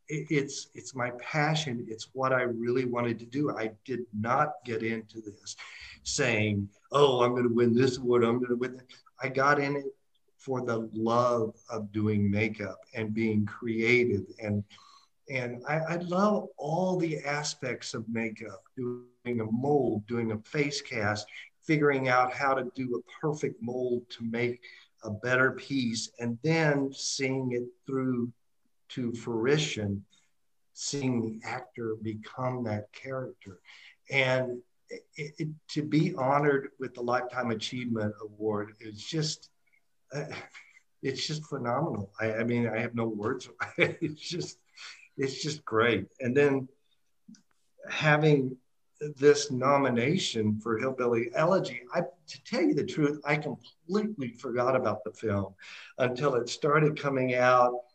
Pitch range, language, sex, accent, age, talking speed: 115-145 Hz, English, male, American, 50-69, 140 wpm